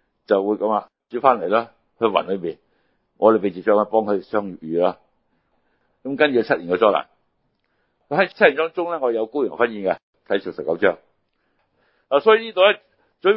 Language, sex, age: Chinese, male, 60-79